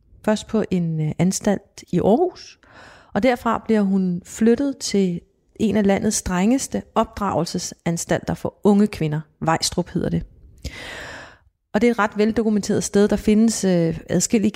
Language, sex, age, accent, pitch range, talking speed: Danish, female, 30-49, native, 175-215 Hz, 145 wpm